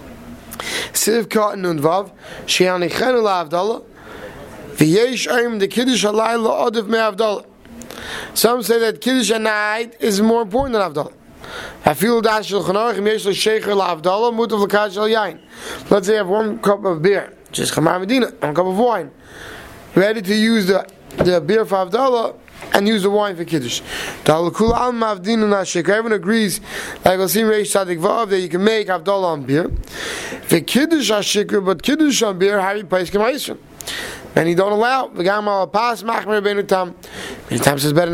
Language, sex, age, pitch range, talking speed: English, male, 30-49, 185-225 Hz, 125 wpm